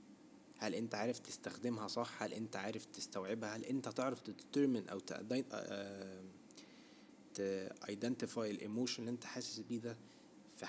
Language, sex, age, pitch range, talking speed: Arabic, male, 20-39, 105-130 Hz, 135 wpm